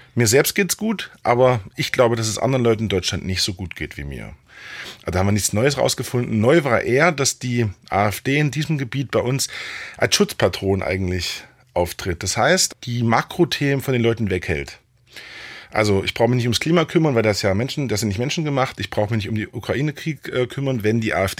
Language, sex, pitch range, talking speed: German, male, 100-125 Hz, 215 wpm